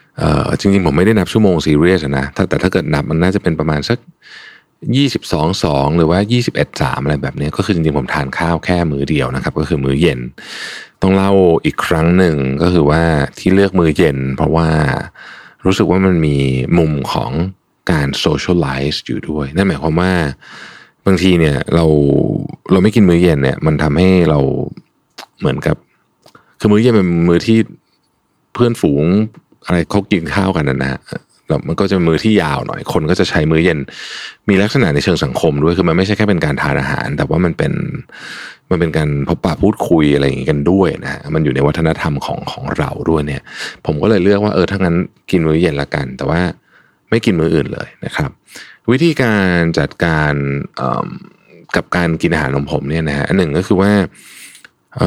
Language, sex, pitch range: Thai, male, 75-95 Hz